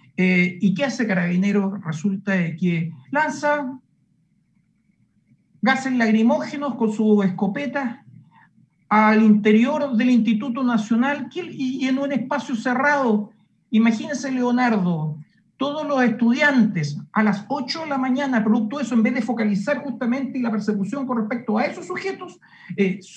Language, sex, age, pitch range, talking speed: Spanish, male, 50-69, 180-255 Hz, 130 wpm